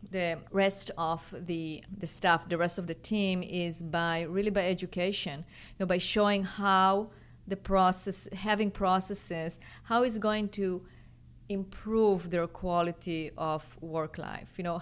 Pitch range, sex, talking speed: 170-200 Hz, female, 150 wpm